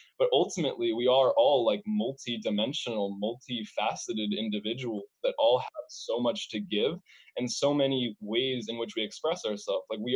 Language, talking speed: English, 160 wpm